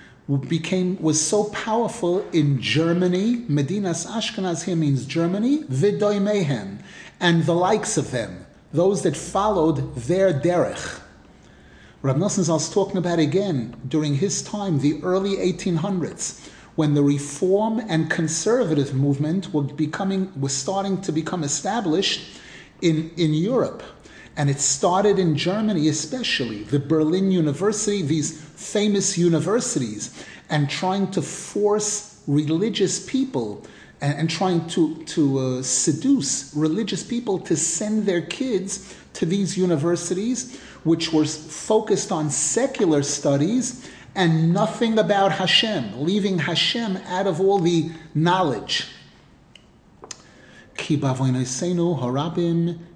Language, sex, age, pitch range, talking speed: English, male, 30-49, 155-195 Hz, 110 wpm